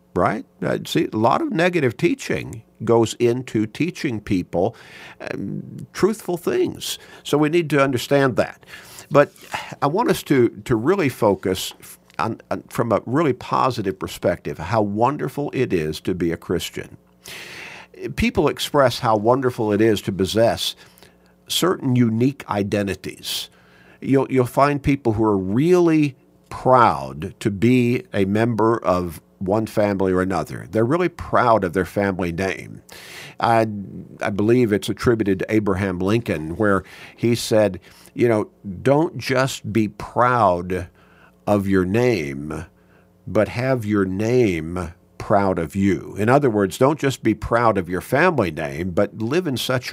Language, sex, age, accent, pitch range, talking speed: English, male, 50-69, American, 95-125 Hz, 145 wpm